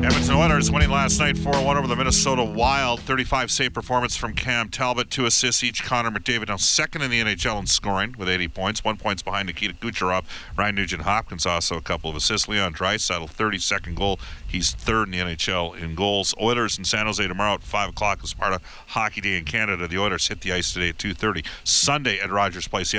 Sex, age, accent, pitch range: male, 50-69, American, 85-110 Hz